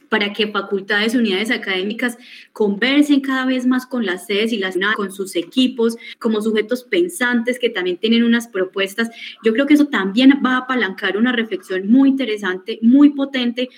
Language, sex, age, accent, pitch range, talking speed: Spanish, female, 20-39, Colombian, 205-250 Hz, 170 wpm